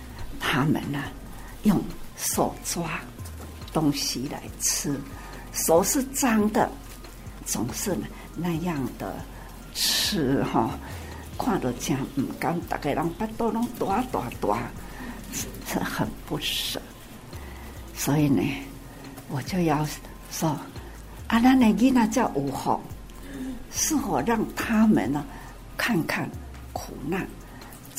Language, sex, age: Chinese, female, 60-79